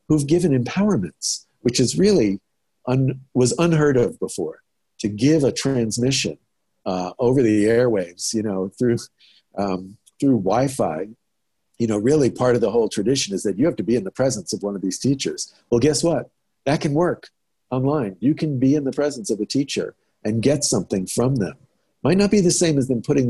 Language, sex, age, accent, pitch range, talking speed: English, male, 50-69, American, 110-150 Hz, 195 wpm